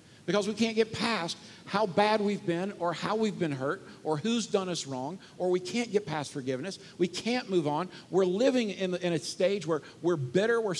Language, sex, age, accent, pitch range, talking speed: English, male, 50-69, American, 140-210 Hz, 210 wpm